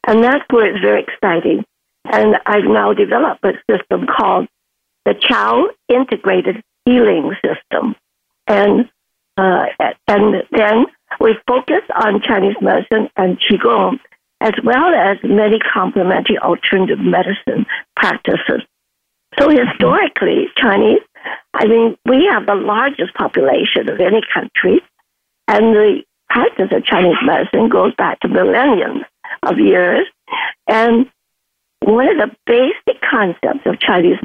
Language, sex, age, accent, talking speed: English, female, 60-79, American, 125 wpm